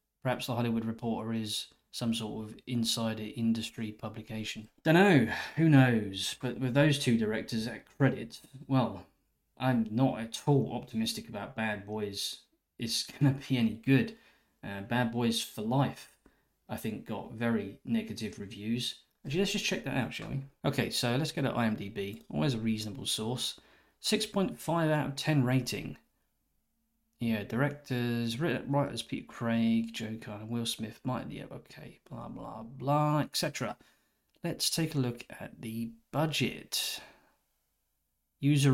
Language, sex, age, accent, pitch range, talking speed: English, male, 20-39, British, 110-140 Hz, 145 wpm